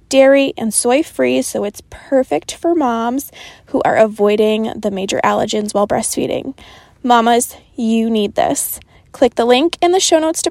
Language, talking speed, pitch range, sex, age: English, 160 wpm, 210-265 Hz, female, 20-39